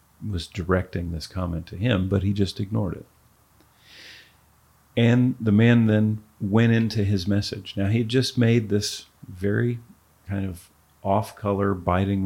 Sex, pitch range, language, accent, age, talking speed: male, 90-115 Hz, English, American, 40-59, 145 wpm